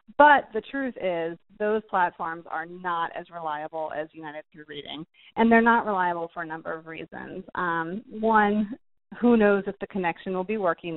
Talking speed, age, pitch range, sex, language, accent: 180 wpm, 30-49, 170-215 Hz, female, English, American